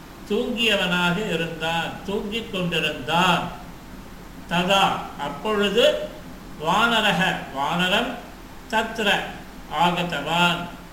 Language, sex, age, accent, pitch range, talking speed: Tamil, male, 50-69, native, 155-220 Hz, 55 wpm